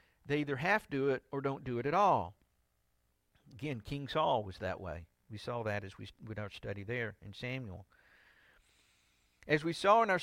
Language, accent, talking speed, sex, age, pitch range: English, American, 200 wpm, male, 50-69, 115-165 Hz